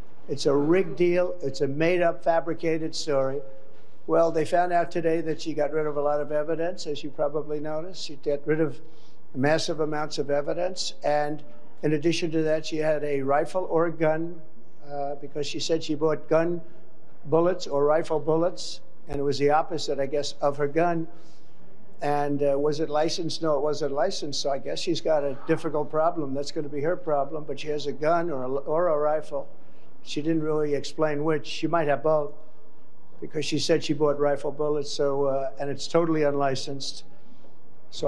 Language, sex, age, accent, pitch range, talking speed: English, male, 60-79, American, 140-160 Hz, 190 wpm